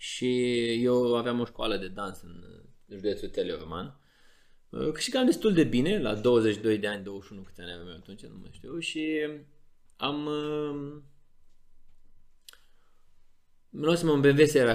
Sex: male